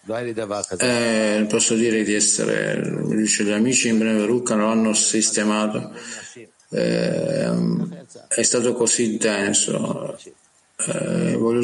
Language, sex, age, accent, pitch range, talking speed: Italian, male, 50-69, native, 110-135 Hz, 100 wpm